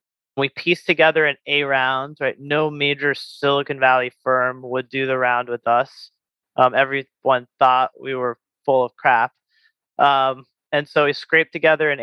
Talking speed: 165 wpm